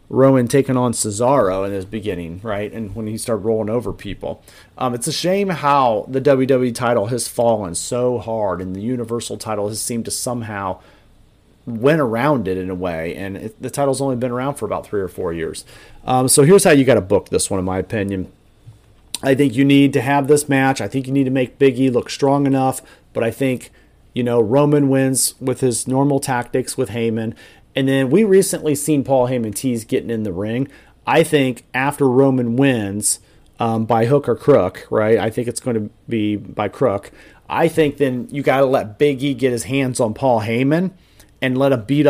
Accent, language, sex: American, English, male